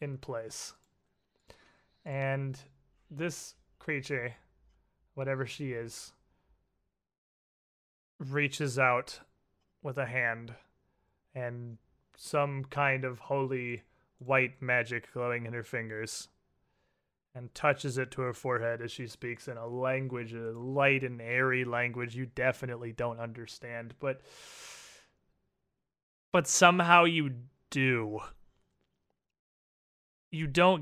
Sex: male